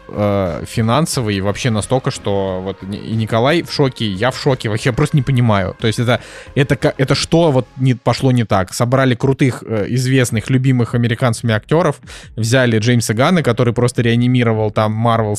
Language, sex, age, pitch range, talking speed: Russian, male, 20-39, 110-135 Hz, 155 wpm